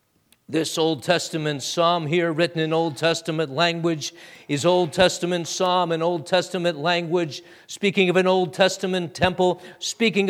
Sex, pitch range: male, 165-230 Hz